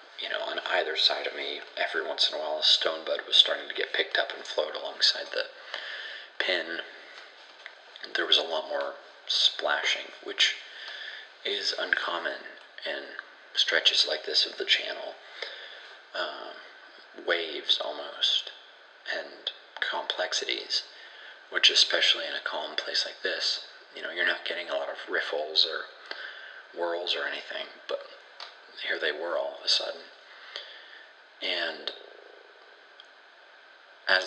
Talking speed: 135 wpm